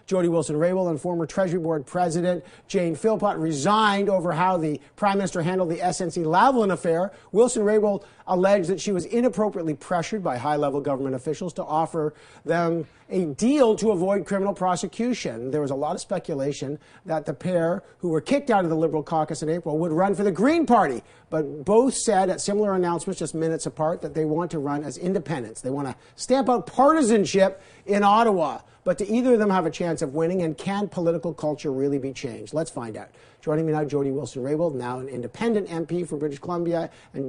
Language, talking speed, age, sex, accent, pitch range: English, 200 wpm, 50-69, male, American, 150-195 Hz